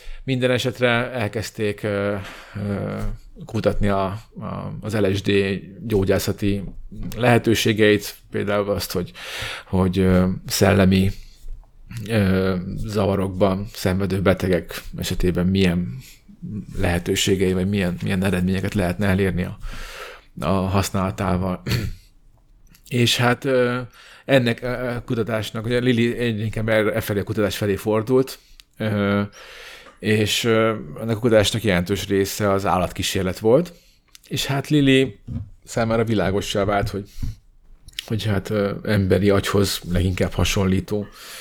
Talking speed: 105 wpm